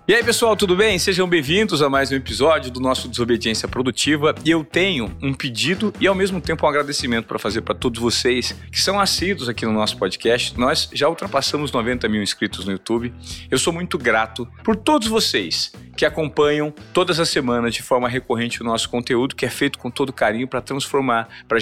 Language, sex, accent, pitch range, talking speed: Portuguese, male, Brazilian, 120-160 Hz, 205 wpm